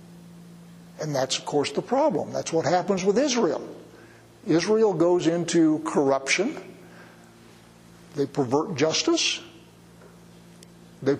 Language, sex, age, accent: English, male, 60-79, American